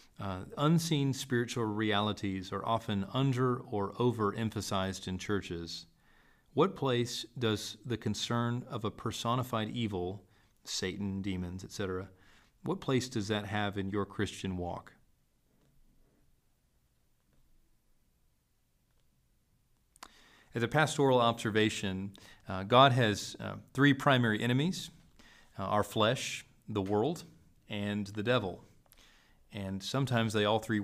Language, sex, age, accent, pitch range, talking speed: English, male, 40-59, American, 100-120 Hz, 110 wpm